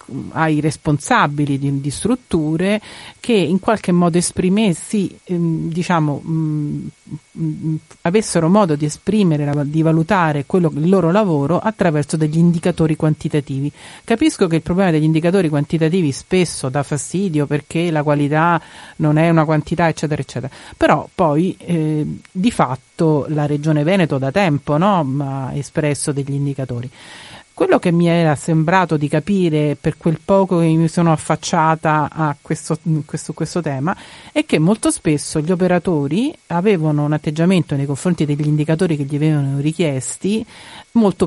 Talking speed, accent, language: 140 wpm, native, Italian